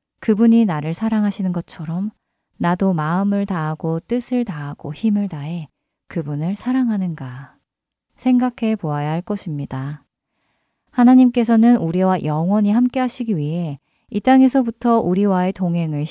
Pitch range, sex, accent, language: 155-225 Hz, female, native, Korean